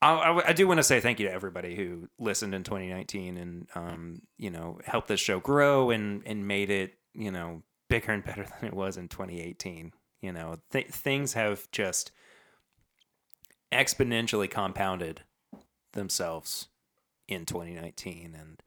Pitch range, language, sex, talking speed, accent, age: 85-120 Hz, English, male, 155 wpm, American, 30-49